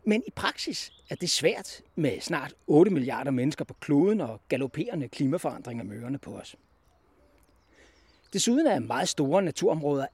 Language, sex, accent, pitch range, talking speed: Danish, male, native, 140-205 Hz, 140 wpm